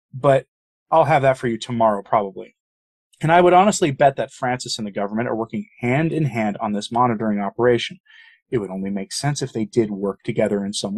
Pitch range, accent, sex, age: 110-160 Hz, American, male, 30-49